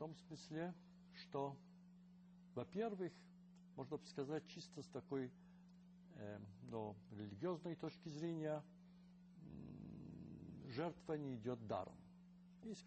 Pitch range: 130-180 Hz